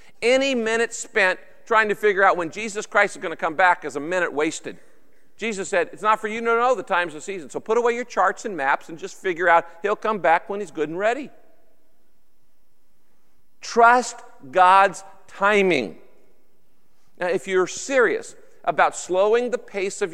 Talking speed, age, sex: 185 wpm, 50-69, male